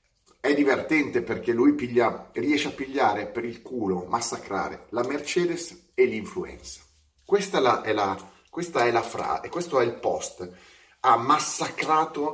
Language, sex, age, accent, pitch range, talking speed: Italian, male, 30-49, native, 95-145 Hz, 135 wpm